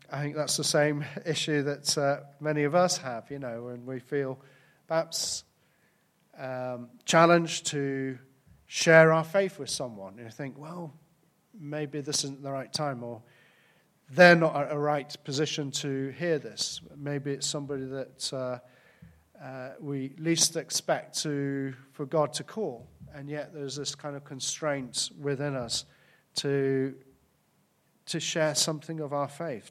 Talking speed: 155 wpm